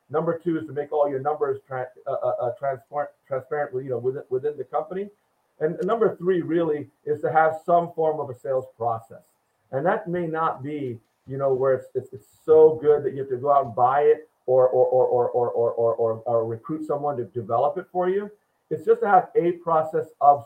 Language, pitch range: English, 145-220 Hz